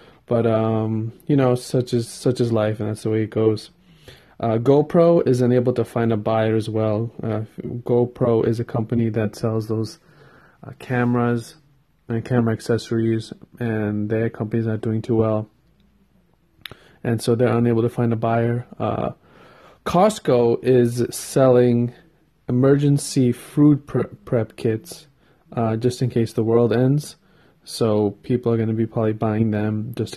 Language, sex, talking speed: English, male, 155 wpm